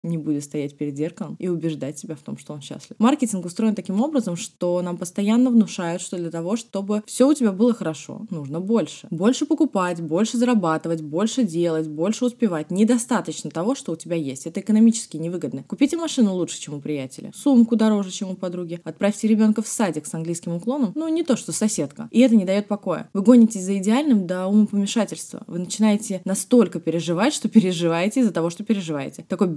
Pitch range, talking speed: 170-230 Hz, 190 wpm